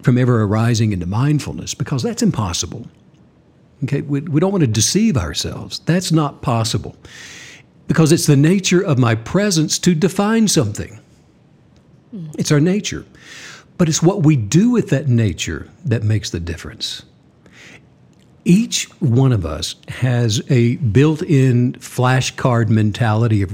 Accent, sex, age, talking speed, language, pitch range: American, male, 60-79, 140 wpm, English, 115-165 Hz